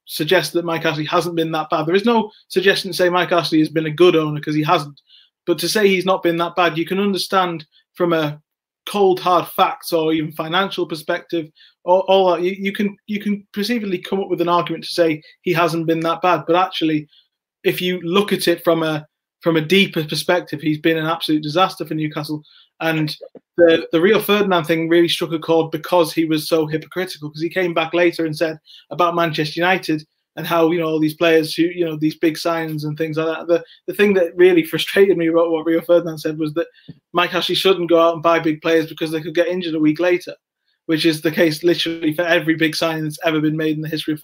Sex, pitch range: male, 160-180 Hz